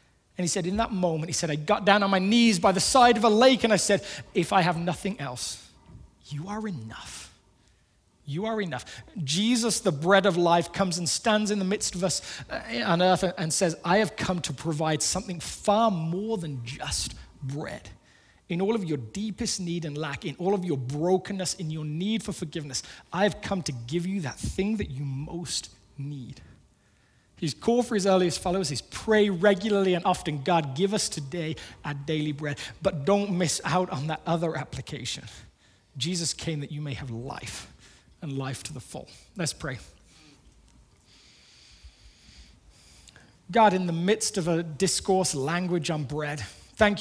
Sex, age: male, 20-39